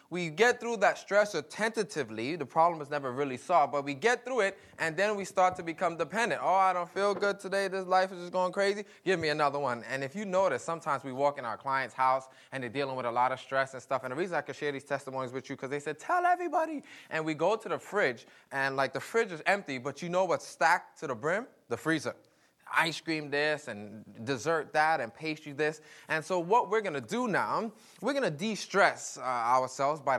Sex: male